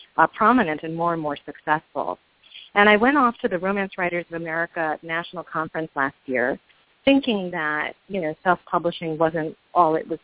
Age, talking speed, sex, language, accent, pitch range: 40-59, 175 wpm, female, English, American, 165-200 Hz